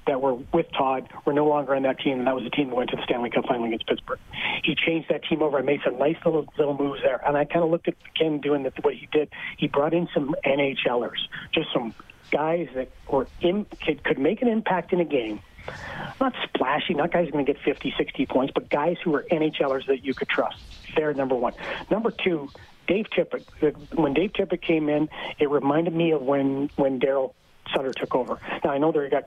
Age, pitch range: 40-59, 140-165 Hz